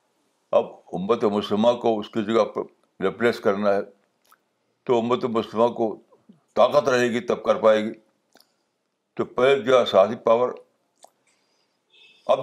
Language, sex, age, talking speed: Urdu, male, 60-79, 125 wpm